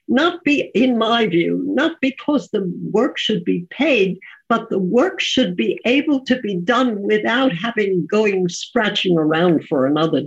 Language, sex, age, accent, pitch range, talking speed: English, female, 60-79, American, 180-255 Hz, 165 wpm